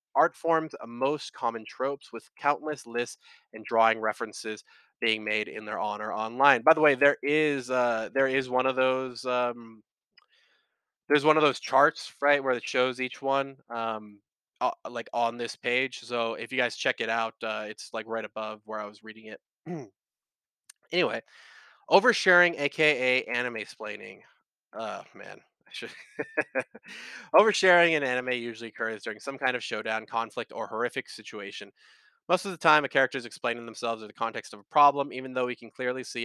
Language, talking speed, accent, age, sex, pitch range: English, 175 wpm, American, 20-39, male, 115-140 Hz